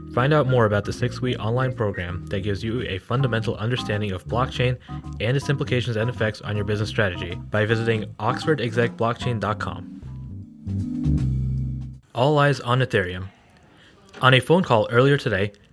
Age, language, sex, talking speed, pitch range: 20-39, English, male, 145 wpm, 100-125 Hz